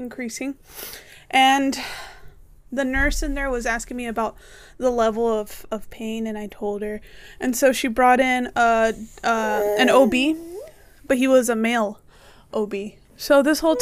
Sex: female